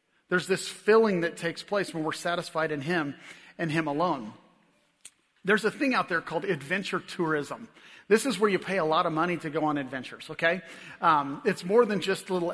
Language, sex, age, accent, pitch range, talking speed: English, male, 40-59, American, 165-200 Hz, 205 wpm